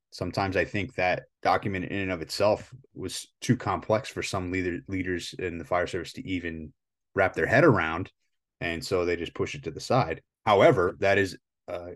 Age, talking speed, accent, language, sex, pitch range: 30-49, 195 wpm, American, English, male, 85-100 Hz